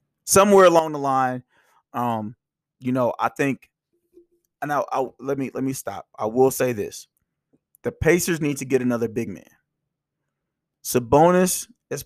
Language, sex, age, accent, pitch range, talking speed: English, male, 30-49, American, 130-160 Hz, 155 wpm